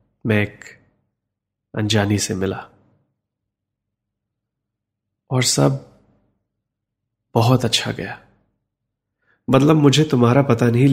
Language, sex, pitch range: Hindi, male, 110-125 Hz